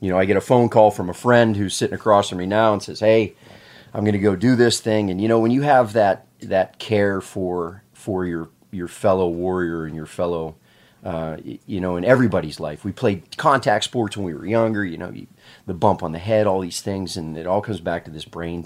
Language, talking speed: English, 250 wpm